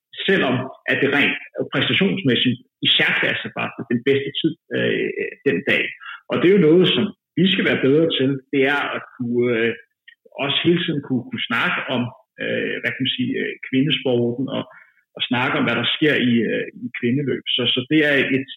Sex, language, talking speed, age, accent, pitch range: male, Danish, 200 wpm, 60-79, native, 130-180 Hz